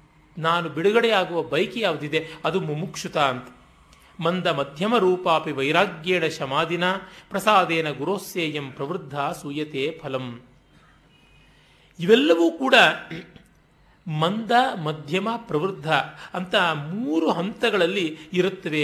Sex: male